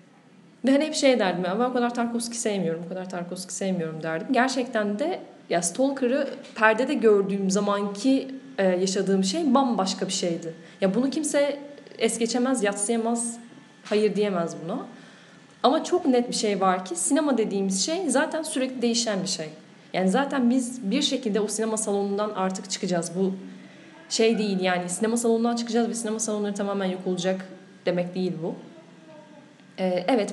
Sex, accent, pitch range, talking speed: female, native, 190-245 Hz, 160 wpm